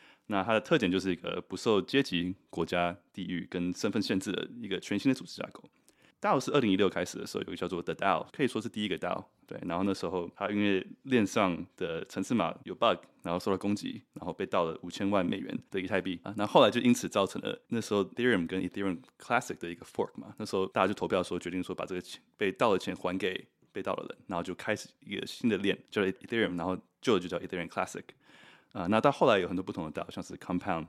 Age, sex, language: 20-39, male, Chinese